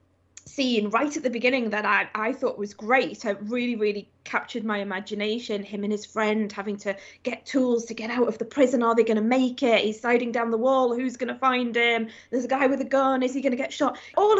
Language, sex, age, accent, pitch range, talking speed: English, female, 20-39, British, 215-265 Hz, 250 wpm